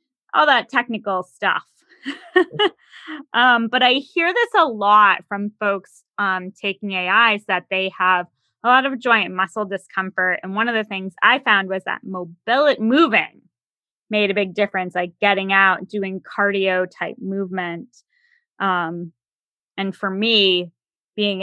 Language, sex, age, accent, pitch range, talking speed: English, female, 20-39, American, 185-245 Hz, 145 wpm